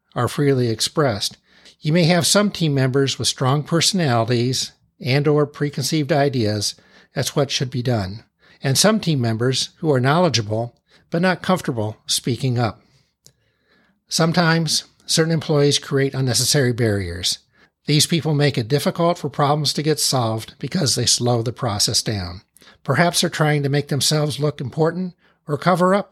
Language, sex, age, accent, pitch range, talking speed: English, male, 60-79, American, 125-160 Hz, 150 wpm